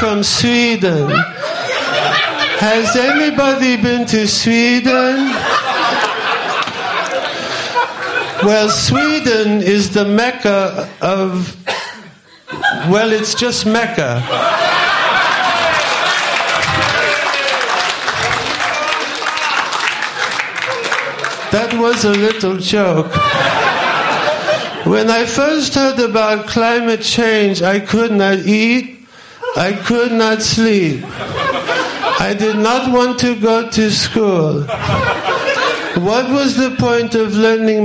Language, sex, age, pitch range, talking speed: English, male, 50-69, 200-245 Hz, 80 wpm